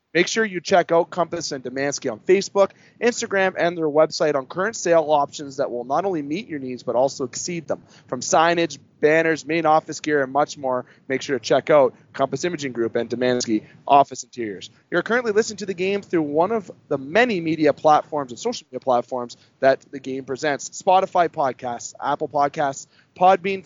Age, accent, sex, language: 30-49, American, male, English